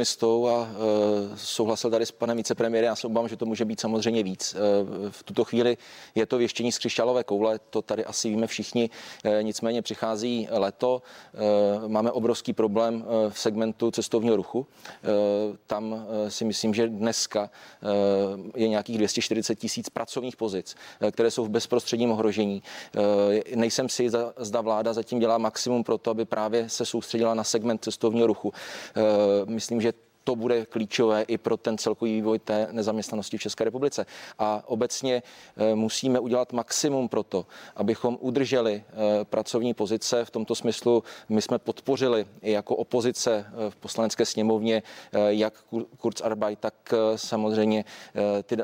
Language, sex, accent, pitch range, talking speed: Czech, male, native, 110-120 Hz, 150 wpm